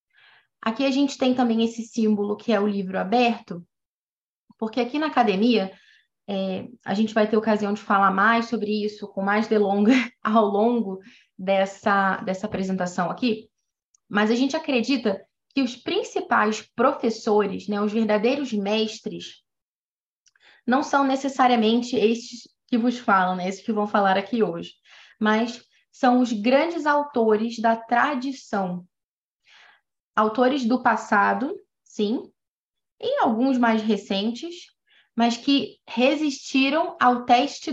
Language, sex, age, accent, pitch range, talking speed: Portuguese, female, 20-39, Brazilian, 210-255 Hz, 130 wpm